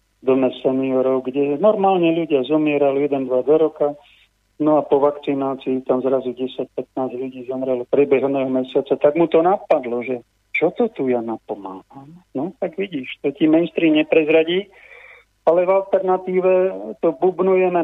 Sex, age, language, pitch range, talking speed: male, 50-69, Slovak, 130-155 Hz, 140 wpm